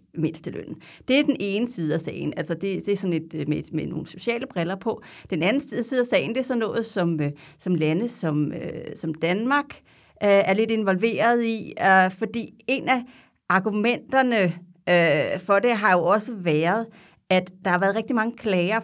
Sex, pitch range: female, 175-225 Hz